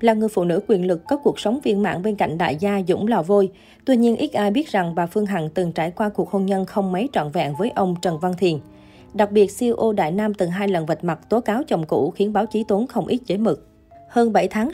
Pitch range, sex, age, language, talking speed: 175-215 Hz, female, 20-39, Vietnamese, 275 wpm